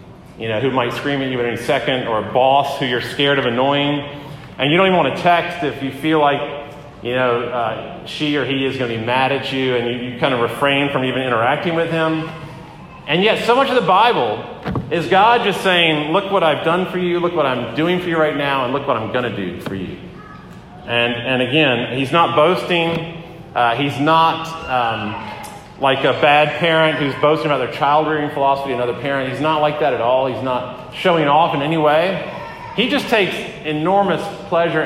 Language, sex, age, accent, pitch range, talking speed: English, male, 40-59, American, 130-165 Hz, 220 wpm